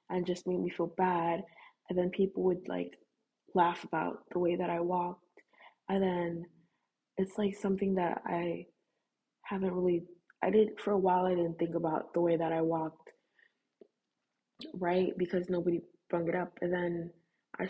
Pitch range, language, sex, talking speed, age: 165-180 Hz, English, female, 170 wpm, 20-39